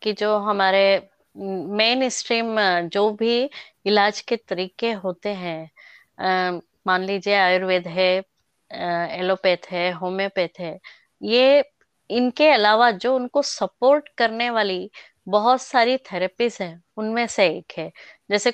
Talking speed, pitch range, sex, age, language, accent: 125 wpm, 190-260 Hz, female, 20-39, Hindi, native